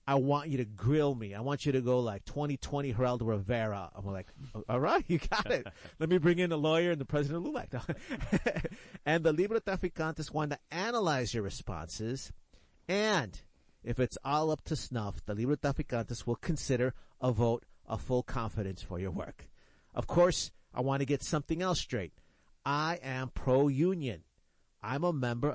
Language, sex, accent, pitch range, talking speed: English, male, American, 115-155 Hz, 185 wpm